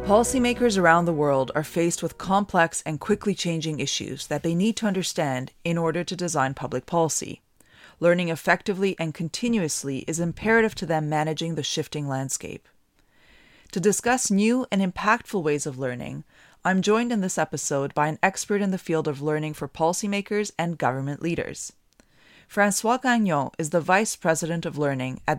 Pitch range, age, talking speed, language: 155-195 Hz, 30-49, 165 wpm, English